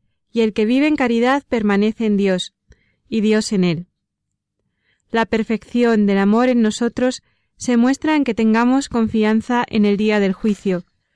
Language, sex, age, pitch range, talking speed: Spanish, female, 20-39, 200-250 Hz, 160 wpm